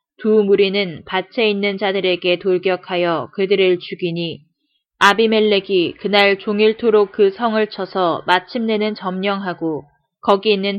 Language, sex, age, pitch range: Korean, female, 20-39, 180-210 Hz